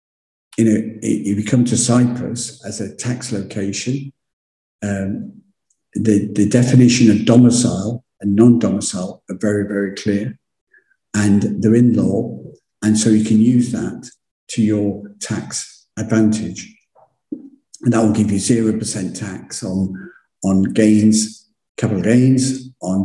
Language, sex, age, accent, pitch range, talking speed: English, male, 50-69, British, 105-120 Hz, 130 wpm